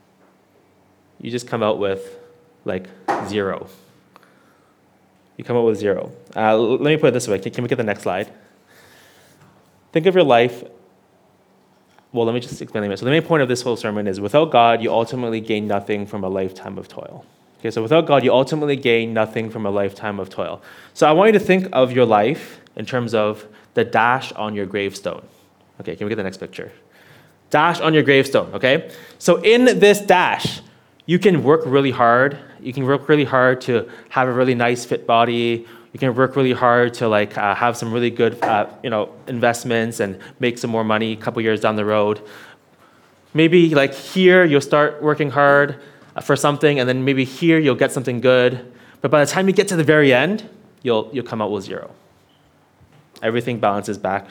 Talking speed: 200 wpm